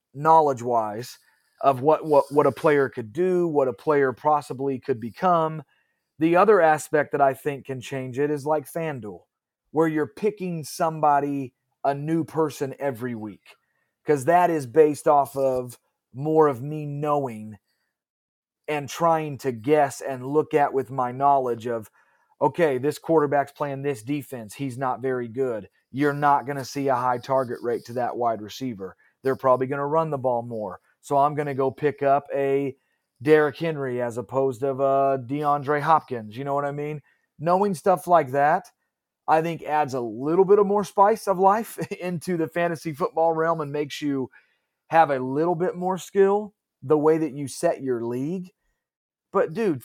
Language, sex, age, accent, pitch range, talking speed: English, male, 30-49, American, 135-160 Hz, 180 wpm